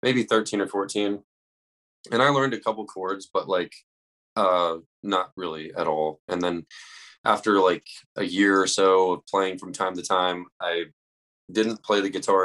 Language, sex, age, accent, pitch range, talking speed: English, male, 20-39, American, 85-100 Hz, 180 wpm